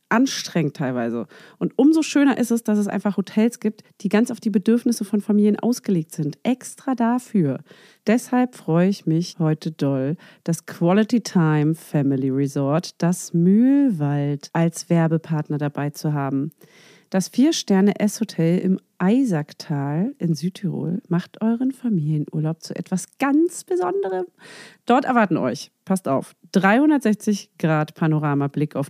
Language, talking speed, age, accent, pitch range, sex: German, 130 wpm, 40-59, German, 165-245 Hz, female